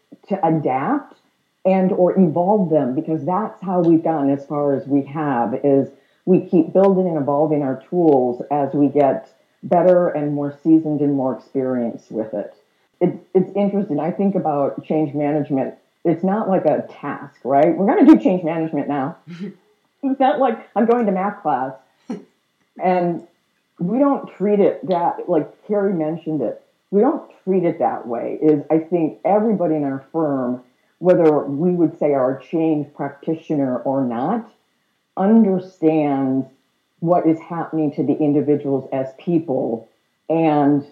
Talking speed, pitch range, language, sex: 155 wpm, 145-190 Hz, English, female